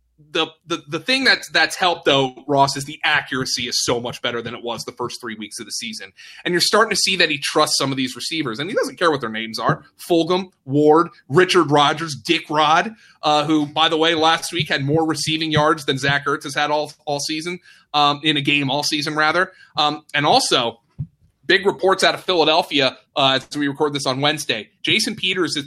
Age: 30-49